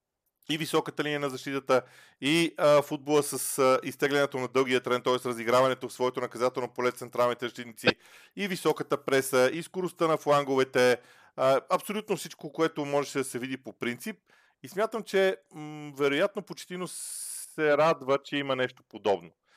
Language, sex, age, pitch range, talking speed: Bulgarian, male, 40-59, 125-160 Hz, 155 wpm